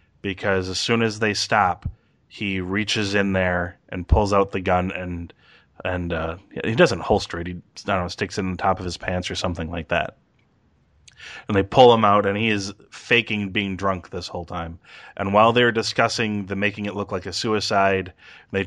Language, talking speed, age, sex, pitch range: English, 205 wpm, 30-49, male, 90-115 Hz